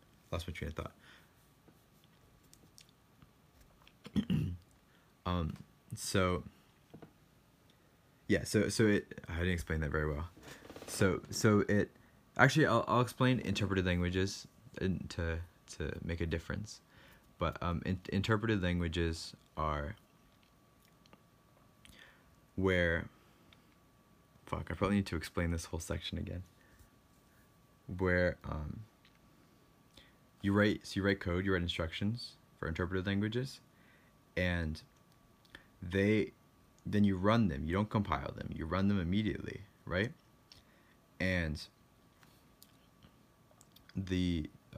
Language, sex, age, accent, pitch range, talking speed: English, male, 20-39, American, 85-105 Hz, 105 wpm